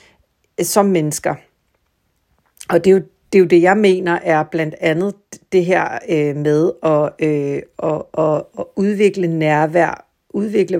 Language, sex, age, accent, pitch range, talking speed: Danish, female, 60-79, native, 160-185 Hz, 140 wpm